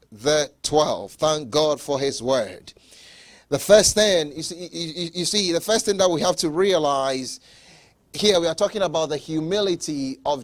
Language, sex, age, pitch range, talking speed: English, male, 30-49, 155-205 Hz, 185 wpm